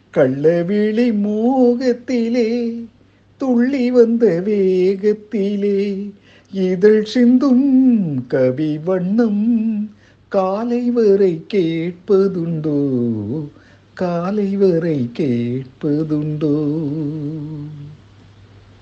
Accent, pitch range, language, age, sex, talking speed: native, 145-220 Hz, Tamil, 60-79, male, 35 wpm